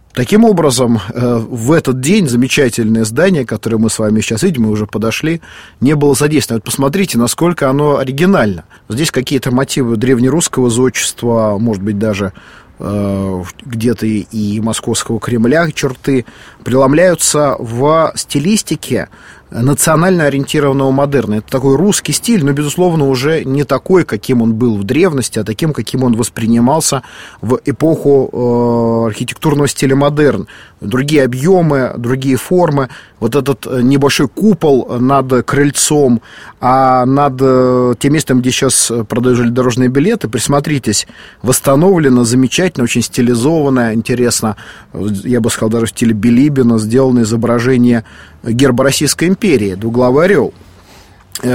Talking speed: 125 wpm